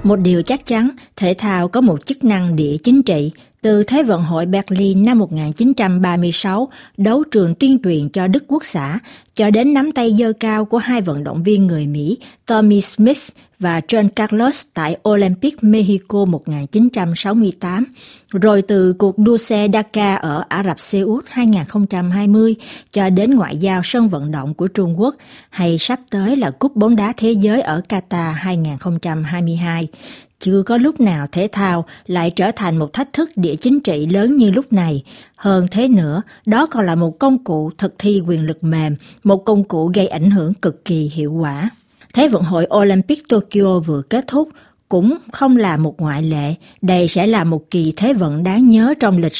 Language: Vietnamese